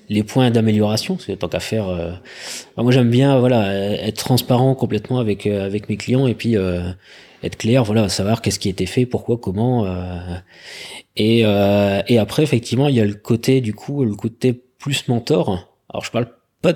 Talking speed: 195 wpm